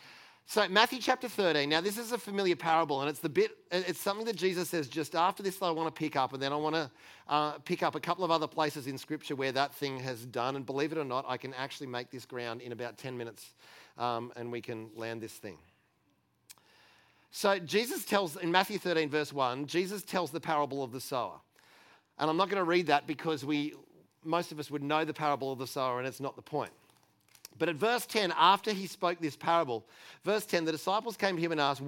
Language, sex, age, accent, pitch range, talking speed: English, male, 40-59, Australian, 135-185 Hz, 235 wpm